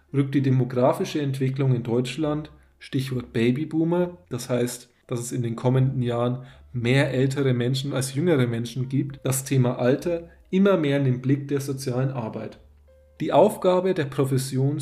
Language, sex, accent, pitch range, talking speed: German, male, German, 125-150 Hz, 155 wpm